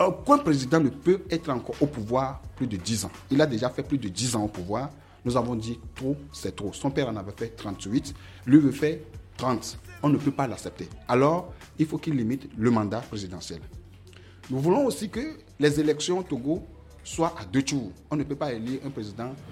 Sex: male